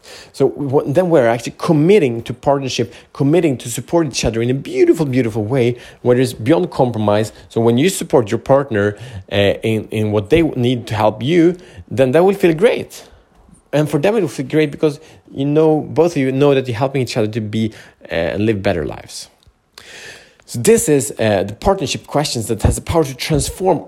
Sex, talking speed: male, 205 wpm